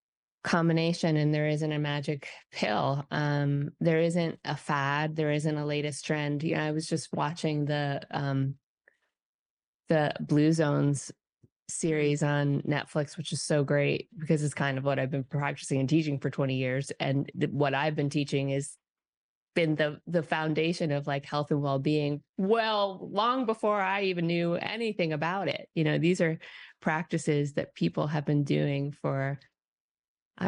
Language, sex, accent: English, female, American